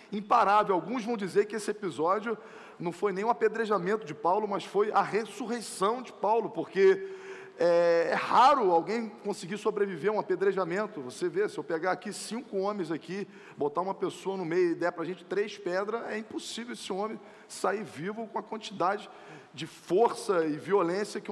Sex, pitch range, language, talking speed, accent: male, 190-230 Hz, Portuguese, 185 wpm, Brazilian